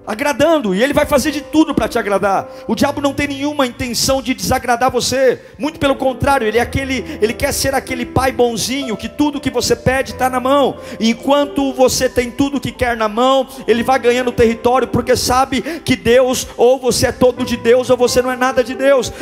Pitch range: 240-265 Hz